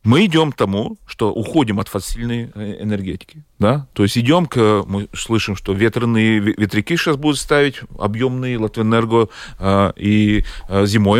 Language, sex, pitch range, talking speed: Russian, male, 105-135 Hz, 135 wpm